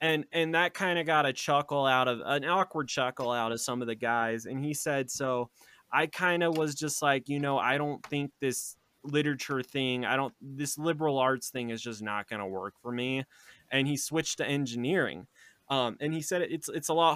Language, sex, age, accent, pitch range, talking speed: English, male, 20-39, American, 135-170 Hz, 225 wpm